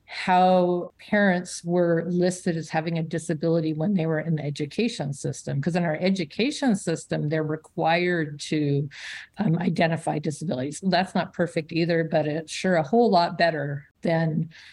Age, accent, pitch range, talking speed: 50-69, American, 160-190 Hz, 155 wpm